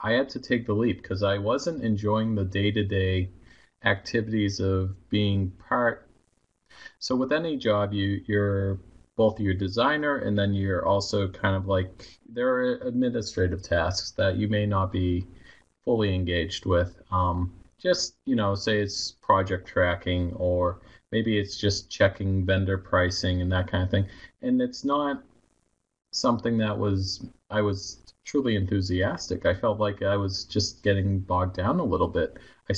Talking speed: 160 wpm